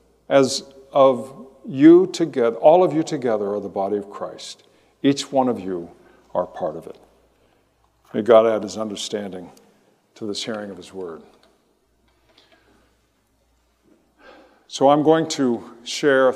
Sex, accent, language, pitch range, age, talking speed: male, American, English, 125-160 Hz, 50-69, 135 wpm